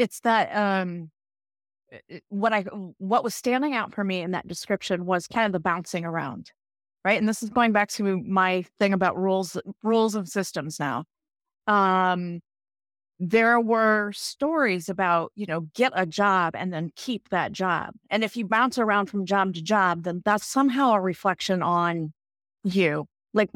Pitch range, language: 180-220 Hz, English